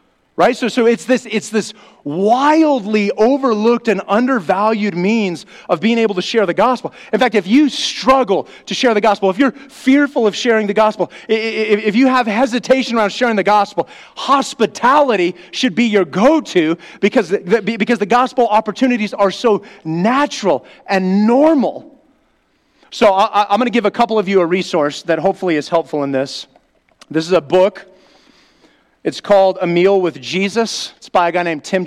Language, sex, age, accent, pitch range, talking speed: English, male, 30-49, American, 175-235 Hz, 175 wpm